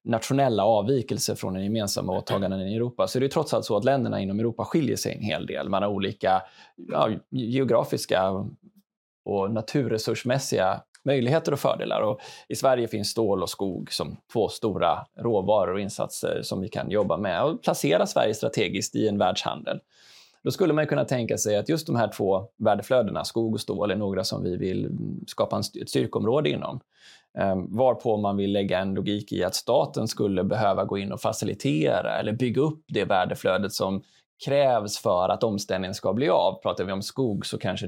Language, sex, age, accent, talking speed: Swedish, male, 20-39, native, 185 wpm